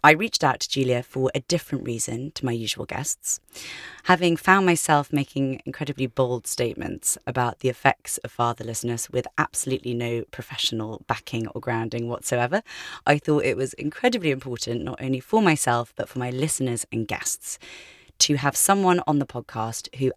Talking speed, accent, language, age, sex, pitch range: 165 wpm, British, English, 30-49, female, 115-150 Hz